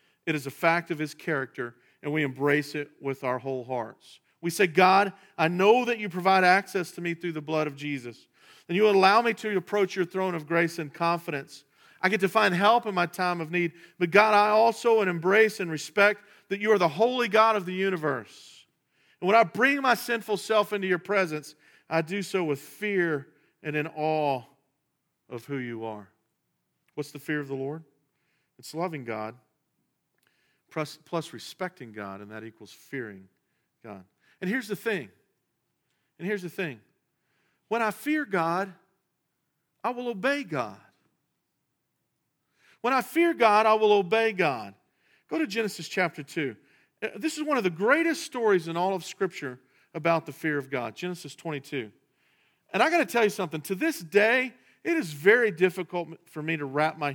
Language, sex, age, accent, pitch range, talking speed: English, male, 40-59, American, 145-205 Hz, 185 wpm